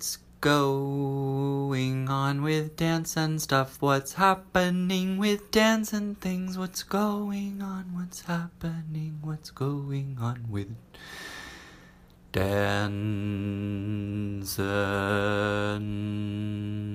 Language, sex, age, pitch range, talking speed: English, male, 20-39, 100-155 Hz, 85 wpm